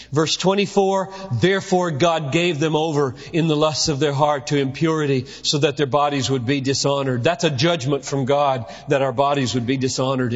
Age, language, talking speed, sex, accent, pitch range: 40-59, English, 190 wpm, male, American, 135-170 Hz